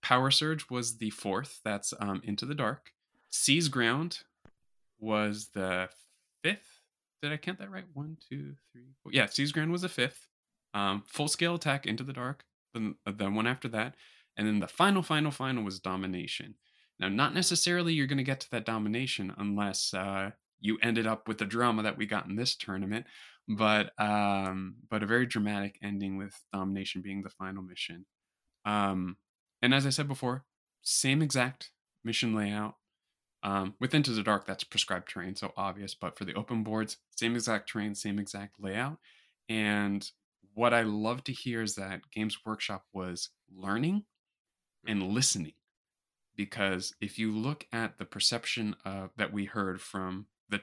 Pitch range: 100-125 Hz